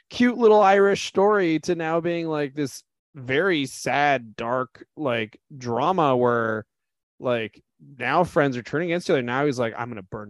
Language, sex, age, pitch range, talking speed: English, male, 20-39, 110-155 Hz, 170 wpm